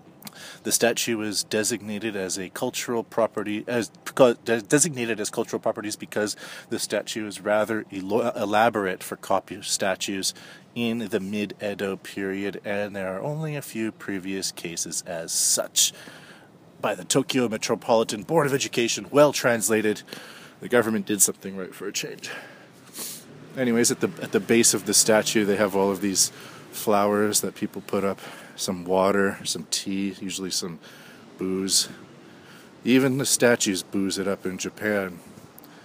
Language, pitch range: English, 100-120 Hz